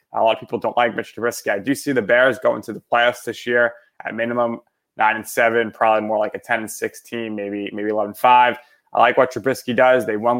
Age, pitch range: 20-39, 105-120 Hz